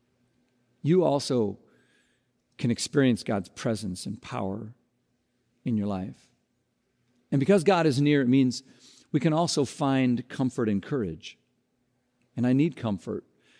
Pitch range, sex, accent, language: 110-135 Hz, male, American, English